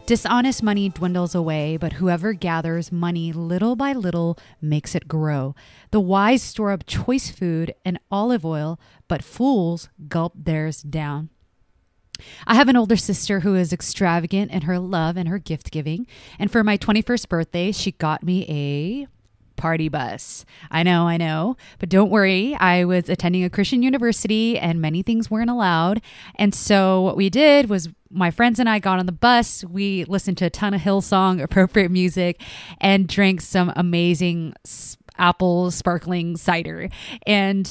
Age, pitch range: 20-39, 165-205 Hz